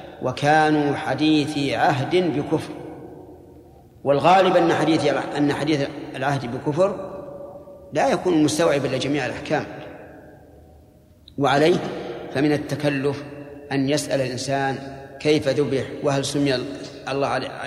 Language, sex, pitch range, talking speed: Arabic, male, 140-165 Hz, 90 wpm